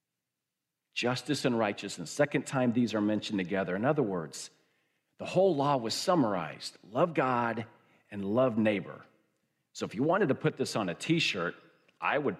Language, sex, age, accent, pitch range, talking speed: English, male, 50-69, American, 115-150 Hz, 165 wpm